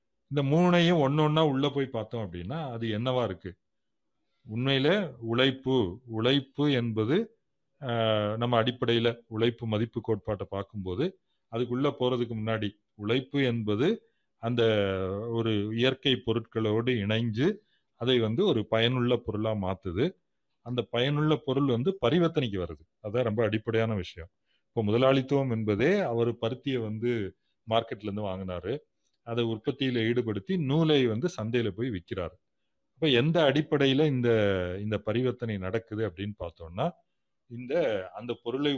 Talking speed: 120 wpm